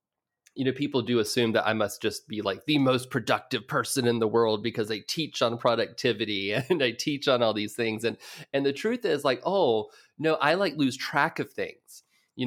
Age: 30-49